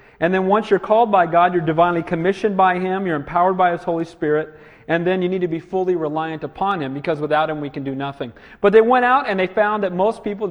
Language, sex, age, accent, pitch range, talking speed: English, male, 40-59, American, 170-210 Hz, 255 wpm